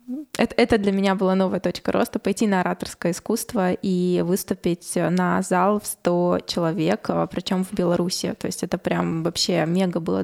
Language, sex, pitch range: Russian, female, 180-215 Hz